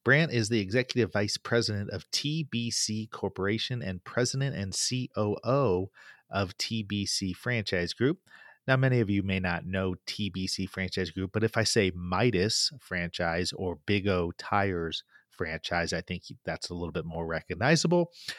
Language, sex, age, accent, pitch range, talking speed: English, male, 30-49, American, 90-115 Hz, 150 wpm